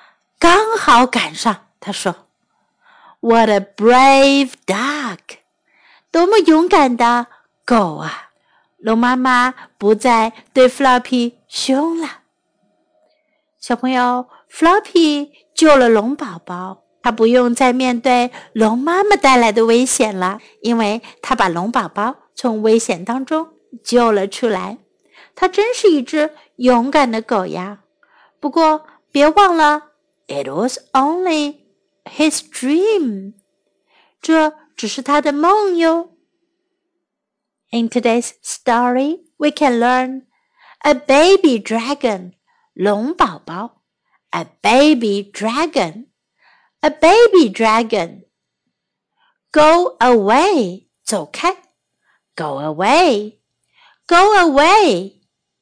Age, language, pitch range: 50-69, Chinese, 230-325 Hz